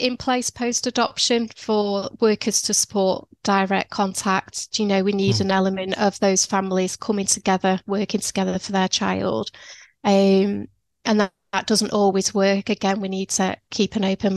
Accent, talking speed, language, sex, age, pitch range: British, 165 wpm, English, female, 30-49, 195-215 Hz